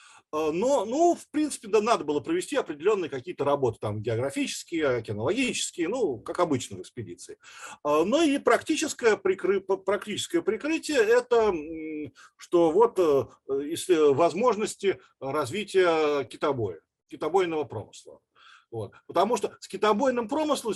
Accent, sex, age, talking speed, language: native, male, 40-59, 120 wpm, Russian